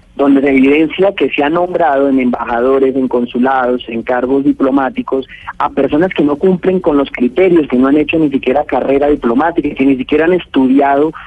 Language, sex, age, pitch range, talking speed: Spanish, male, 30-49, 125-150 Hz, 185 wpm